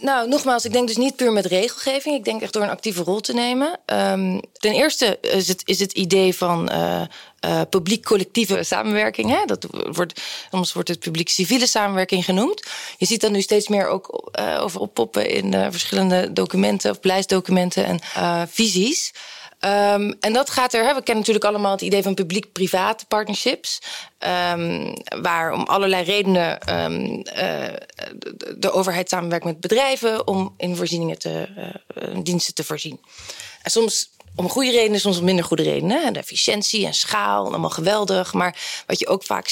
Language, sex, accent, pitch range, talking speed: Dutch, female, Dutch, 170-215 Hz, 175 wpm